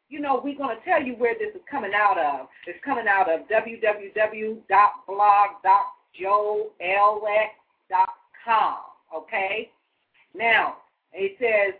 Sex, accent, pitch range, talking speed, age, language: female, American, 210-315 Hz, 110 wpm, 40-59, English